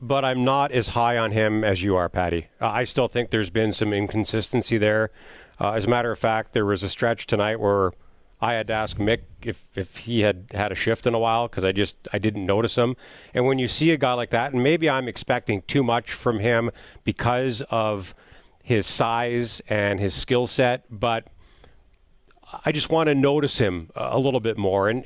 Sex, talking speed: male, 215 wpm